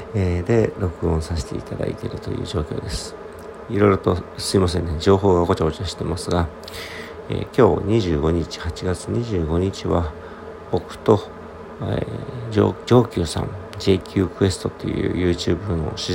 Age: 50-69